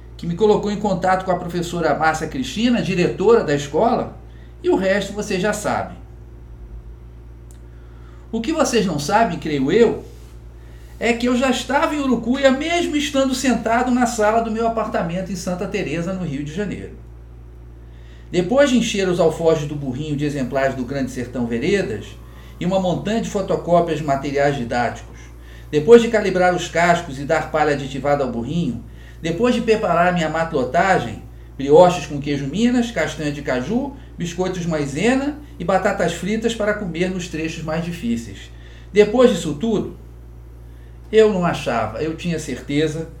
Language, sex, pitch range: Portuguese, male, 130-210 Hz